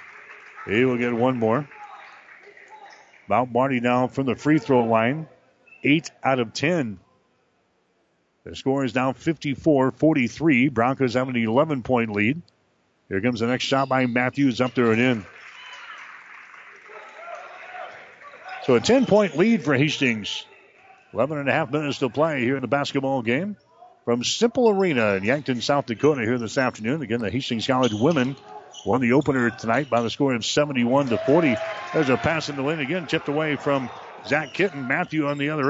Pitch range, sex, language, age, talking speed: 125-165 Hz, male, English, 40-59, 165 wpm